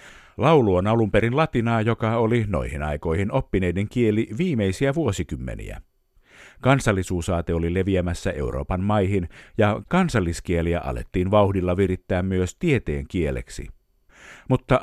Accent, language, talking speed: native, Finnish, 110 wpm